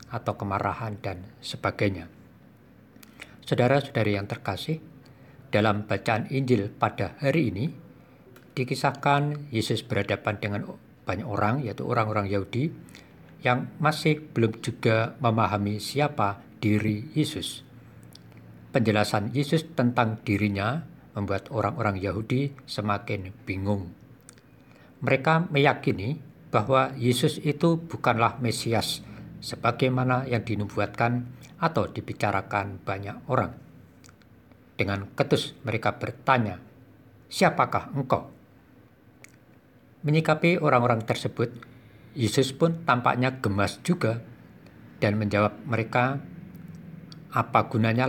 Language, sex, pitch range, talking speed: Indonesian, male, 105-135 Hz, 90 wpm